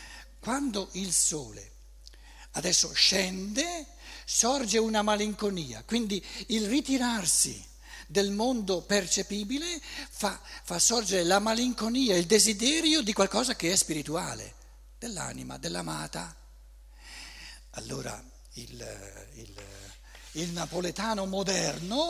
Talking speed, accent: 90 wpm, native